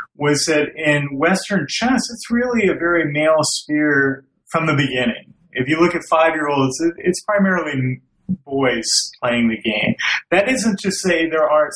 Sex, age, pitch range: male, 30-49, 130-165 Hz